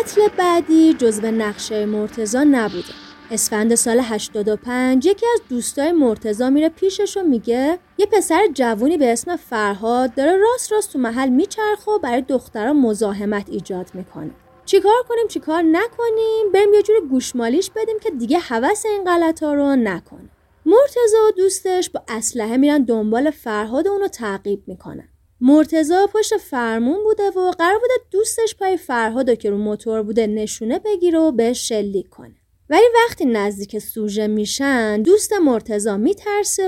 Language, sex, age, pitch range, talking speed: Persian, female, 30-49, 220-345 Hz, 150 wpm